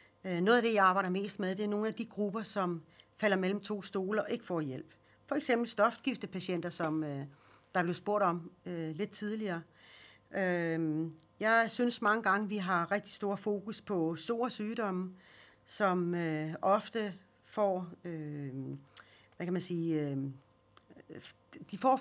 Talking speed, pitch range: 130 wpm, 170-220 Hz